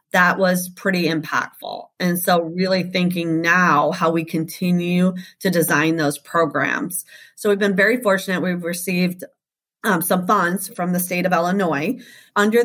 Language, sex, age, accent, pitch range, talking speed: English, female, 30-49, American, 175-210 Hz, 150 wpm